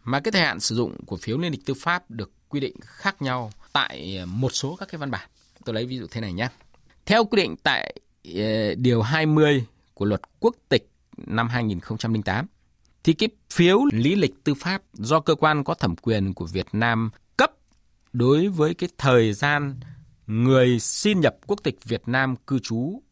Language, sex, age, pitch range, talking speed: Vietnamese, male, 20-39, 115-170 Hz, 190 wpm